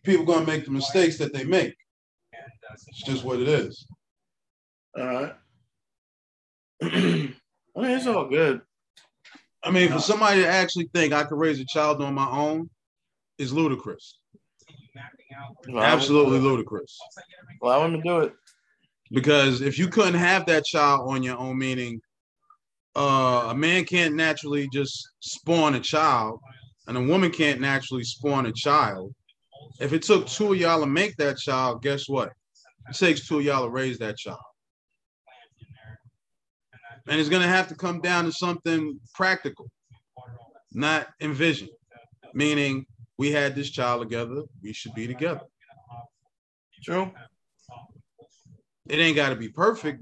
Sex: male